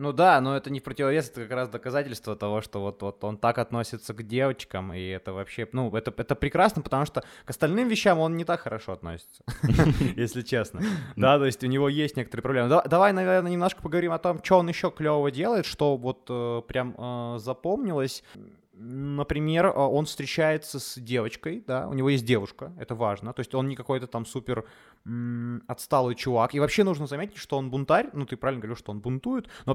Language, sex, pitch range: Ukrainian, male, 115-145 Hz